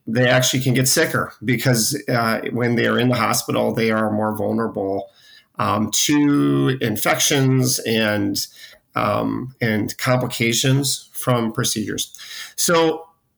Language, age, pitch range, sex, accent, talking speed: English, 40-59, 110-130 Hz, male, American, 120 wpm